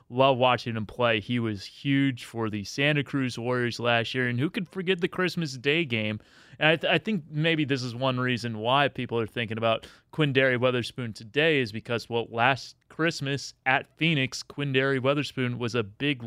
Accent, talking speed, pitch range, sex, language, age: American, 190 wpm, 120-145 Hz, male, English, 30-49